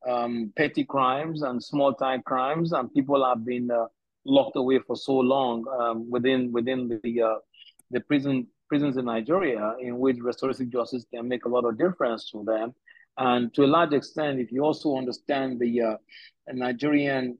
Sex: male